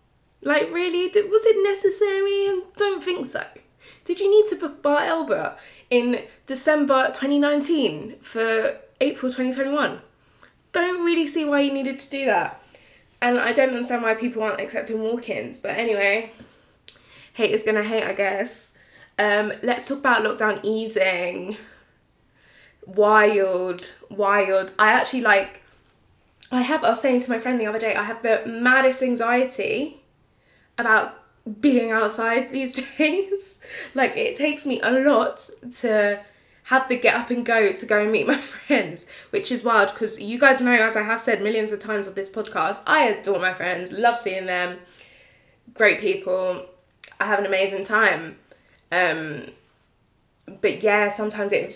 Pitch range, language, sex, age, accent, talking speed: 205-270 Hz, English, female, 10-29, British, 155 wpm